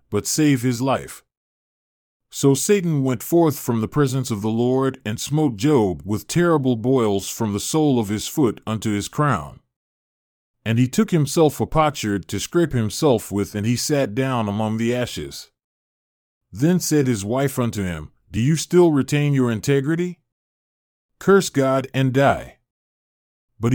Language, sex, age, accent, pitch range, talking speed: English, male, 40-59, American, 110-145 Hz, 160 wpm